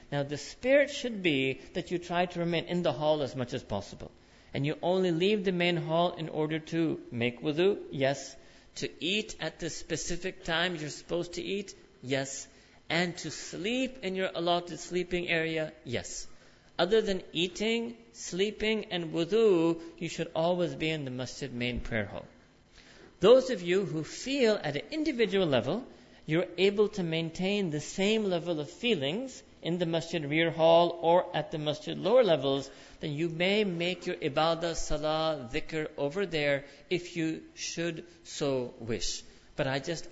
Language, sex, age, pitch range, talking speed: English, male, 50-69, 145-180 Hz, 170 wpm